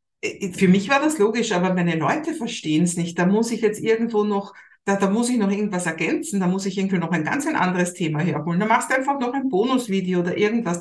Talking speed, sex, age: 240 wpm, female, 60-79